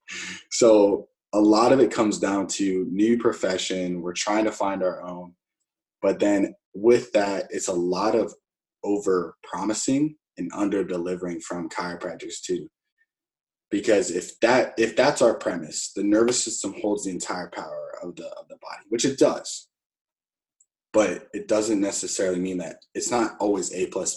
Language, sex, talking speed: English, male, 160 wpm